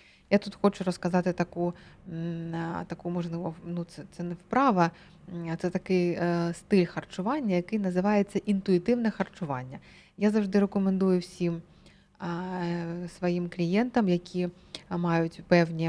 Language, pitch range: Ukrainian, 170-210 Hz